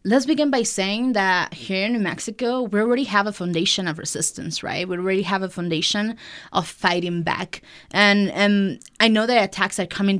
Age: 20-39